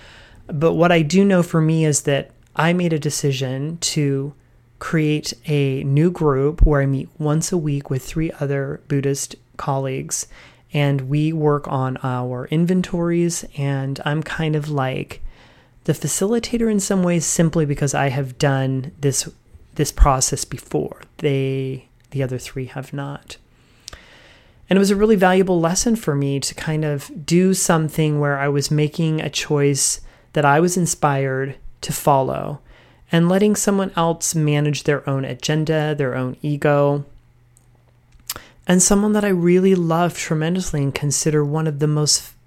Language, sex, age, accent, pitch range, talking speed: English, male, 30-49, American, 140-165 Hz, 155 wpm